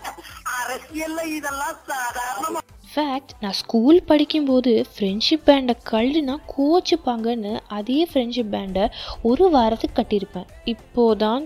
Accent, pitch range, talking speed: native, 220-315 Hz, 105 wpm